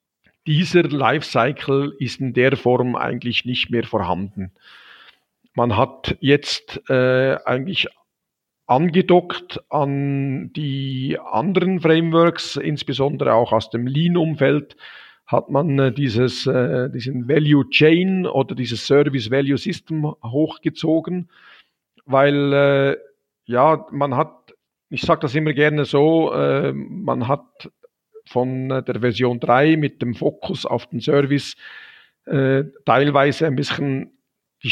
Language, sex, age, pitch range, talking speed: German, male, 50-69, 125-155 Hz, 120 wpm